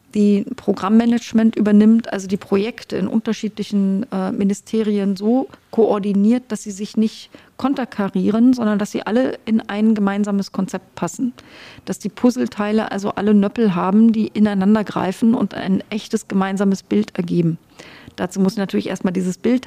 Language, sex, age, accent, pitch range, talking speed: German, female, 40-59, German, 190-220 Hz, 145 wpm